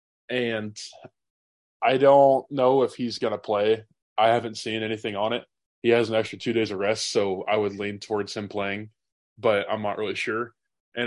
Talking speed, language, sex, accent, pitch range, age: 195 wpm, English, male, American, 105-125 Hz, 20-39